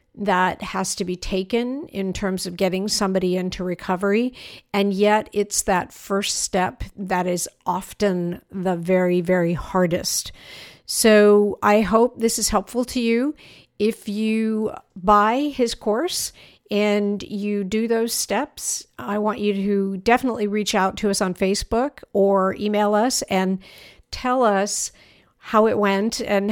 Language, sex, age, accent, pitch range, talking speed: English, female, 50-69, American, 185-210 Hz, 145 wpm